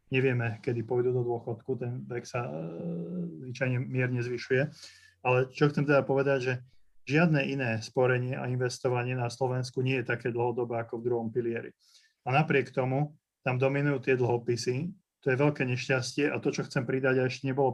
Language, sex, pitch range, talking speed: Slovak, male, 125-140 Hz, 175 wpm